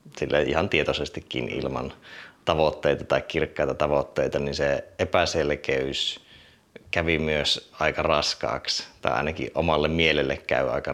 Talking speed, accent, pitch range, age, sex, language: 115 wpm, native, 75-90 Hz, 30-49, male, Finnish